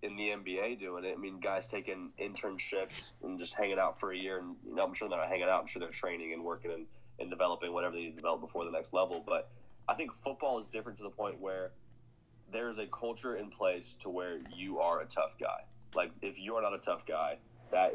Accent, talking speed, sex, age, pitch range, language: American, 250 wpm, male, 20-39, 90-115 Hz, English